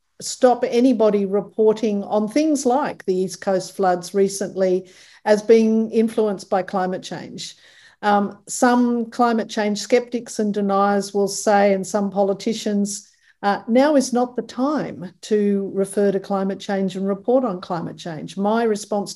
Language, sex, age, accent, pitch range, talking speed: English, female, 50-69, Australian, 185-215 Hz, 145 wpm